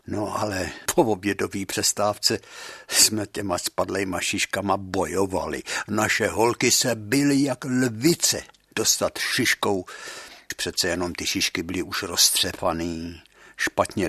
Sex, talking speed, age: male, 110 wpm, 60-79